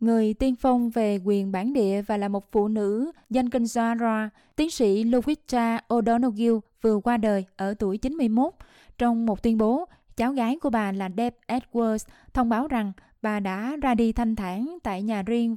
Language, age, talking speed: Vietnamese, 20-39, 185 wpm